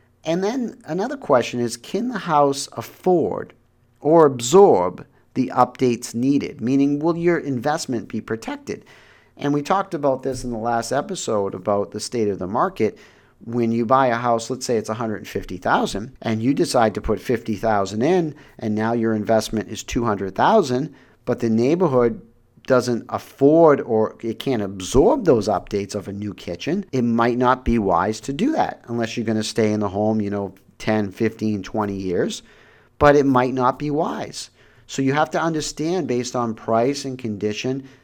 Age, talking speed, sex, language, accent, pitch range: 50-69, 175 wpm, male, English, American, 110-145 Hz